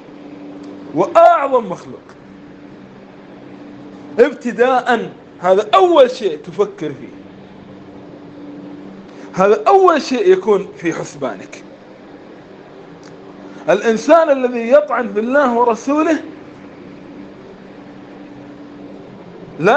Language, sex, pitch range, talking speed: Arabic, male, 185-275 Hz, 60 wpm